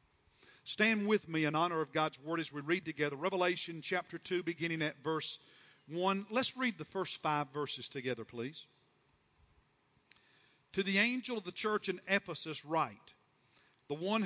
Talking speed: 160 wpm